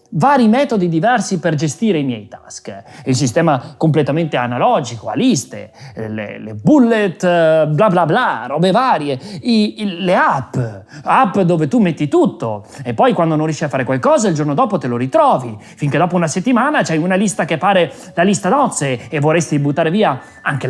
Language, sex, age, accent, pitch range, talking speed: Italian, male, 30-49, native, 150-235 Hz, 185 wpm